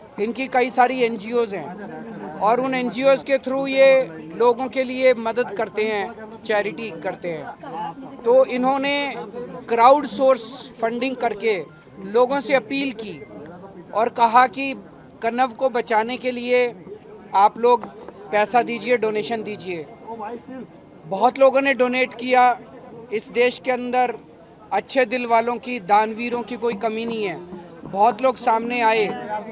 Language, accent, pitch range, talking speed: Hindi, native, 225-260 Hz, 135 wpm